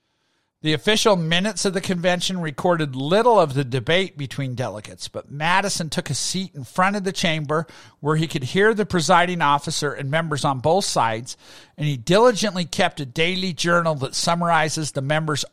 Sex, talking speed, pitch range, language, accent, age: male, 180 wpm, 145-185 Hz, English, American, 50-69